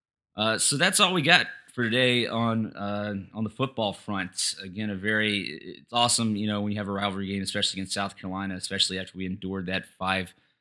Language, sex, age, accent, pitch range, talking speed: English, male, 20-39, American, 95-115 Hz, 210 wpm